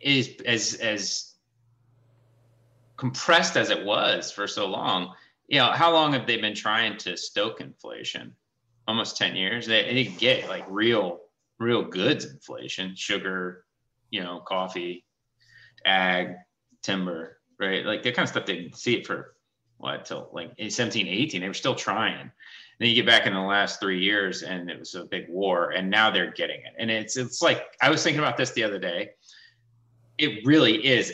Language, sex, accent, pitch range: English, male, American, 90-120 Hz